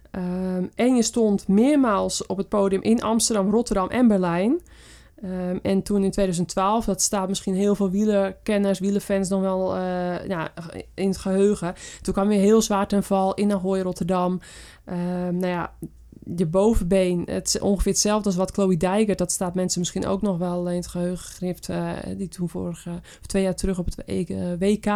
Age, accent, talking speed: 20-39, Dutch, 175 wpm